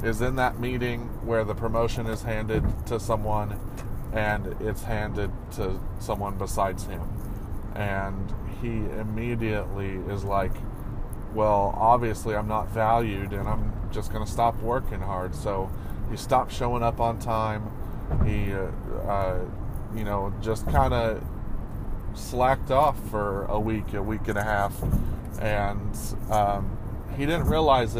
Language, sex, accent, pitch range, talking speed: English, male, American, 100-115 Hz, 140 wpm